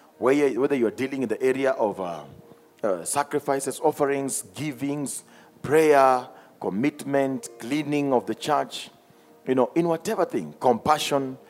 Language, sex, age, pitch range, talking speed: English, male, 40-59, 115-155 Hz, 125 wpm